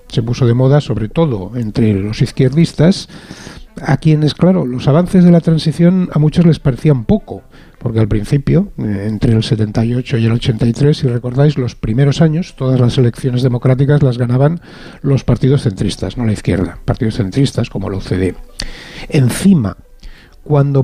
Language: Spanish